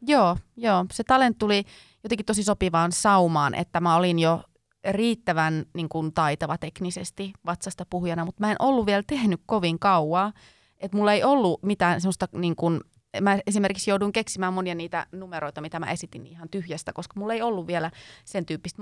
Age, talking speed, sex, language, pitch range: 30-49, 175 wpm, female, Finnish, 165-200 Hz